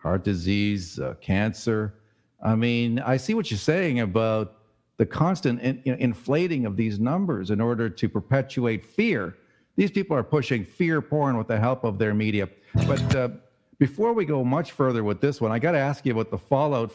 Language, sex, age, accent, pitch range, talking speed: English, male, 50-69, American, 110-140 Hz, 190 wpm